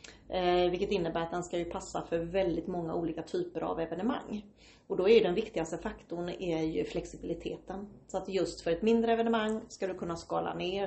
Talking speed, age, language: 200 wpm, 30-49, Swedish